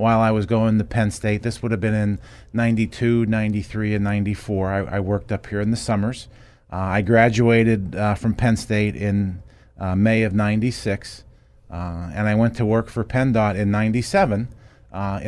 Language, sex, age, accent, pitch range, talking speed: English, male, 30-49, American, 100-110 Hz, 185 wpm